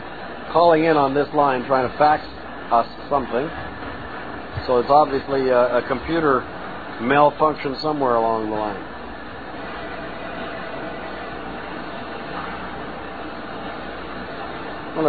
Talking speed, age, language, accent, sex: 90 wpm, 50-69, English, American, male